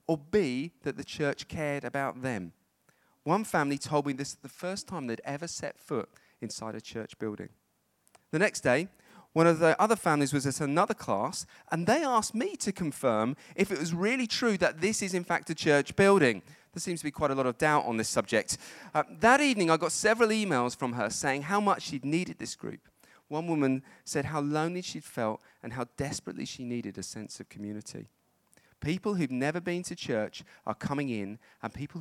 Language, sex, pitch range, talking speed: English, male, 115-165 Hz, 210 wpm